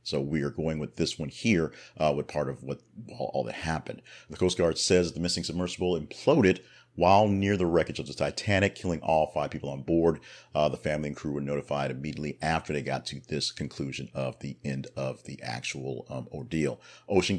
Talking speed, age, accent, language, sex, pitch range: 210 wpm, 40-59, American, English, male, 75-95 Hz